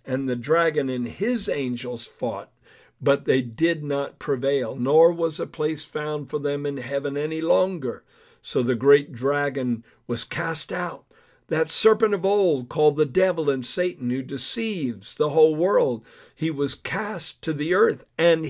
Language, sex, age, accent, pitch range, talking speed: English, male, 50-69, American, 125-165 Hz, 165 wpm